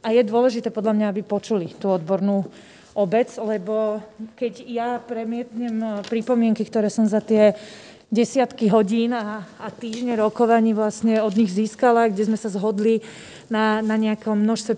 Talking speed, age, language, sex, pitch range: 150 wpm, 20-39, Slovak, female, 215-245 Hz